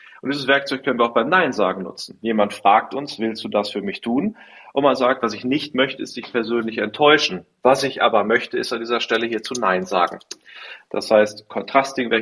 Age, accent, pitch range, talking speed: 30-49, German, 105-125 Hz, 215 wpm